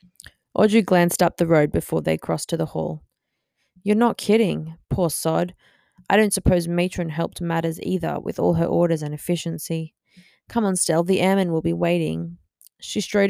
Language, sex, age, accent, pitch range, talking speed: English, female, 20-39, Australian, 160-200 Hz, 175 wpm